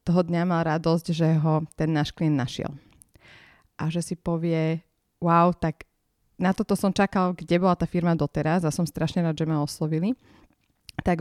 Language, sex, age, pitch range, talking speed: Slovak, female, 30-49, 150-175 Hz, 175 wpm